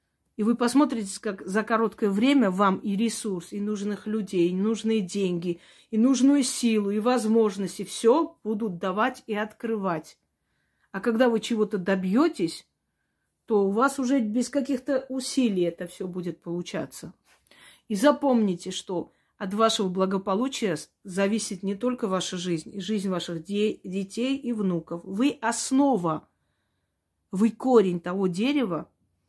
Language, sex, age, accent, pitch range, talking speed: Russian, female, 40-59, native, 185-240 Hz, 135 wpm